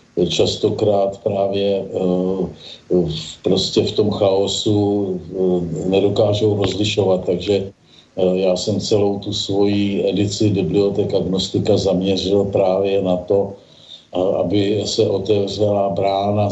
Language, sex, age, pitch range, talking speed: Slovak, male, 50-69, 100-120 Hz, 90 wpm